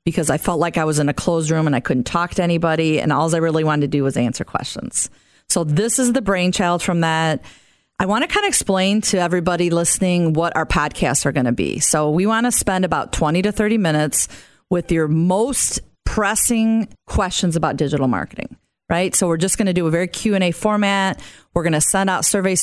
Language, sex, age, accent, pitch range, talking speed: English, female, 40-59, American, 150-185 Hz, 225 wpm